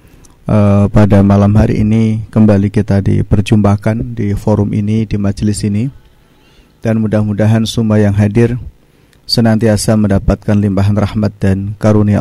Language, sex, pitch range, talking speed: Indonesian, male, 105-120 Hz, 125 wpm